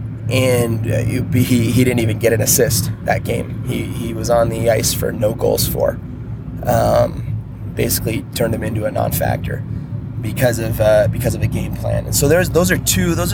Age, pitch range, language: 20-39, 110-125 Hz, English